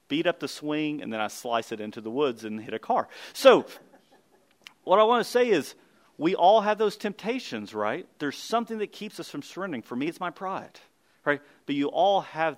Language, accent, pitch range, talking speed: English, American, 130-185 Hz, 220 wpm